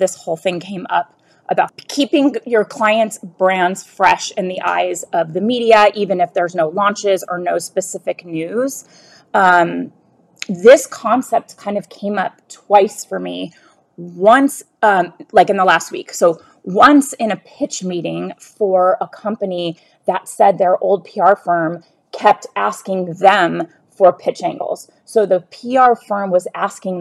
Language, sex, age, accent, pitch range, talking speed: English, female, 30-49, American, 180-230 Hz, 155 wpm